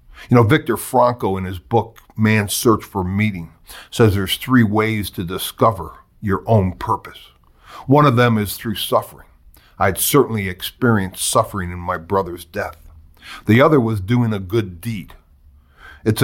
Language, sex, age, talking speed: English, male, 50-69, 160 wpm